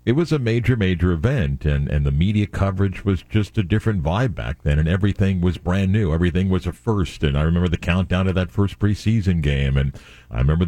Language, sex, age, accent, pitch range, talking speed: English, male, 50-69, American, 80-100 Hz, 225 wpm